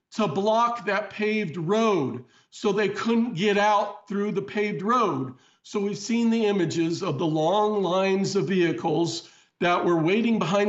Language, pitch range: English, 175-210 Hz